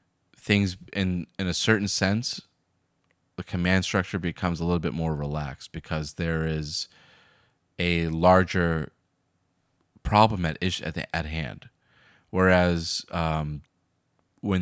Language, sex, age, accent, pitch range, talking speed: English, male, 30-49, American, 85-100 Hz, 115 wpm